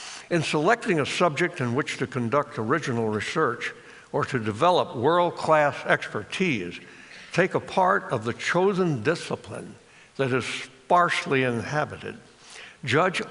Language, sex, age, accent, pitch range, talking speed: Russian, male, 60-79, American, 120-155 Hz, 120 wpm